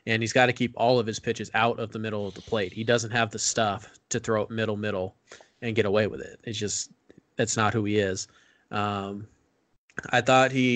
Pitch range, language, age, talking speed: 110-125 Hz, English, 20-39, 225 wpm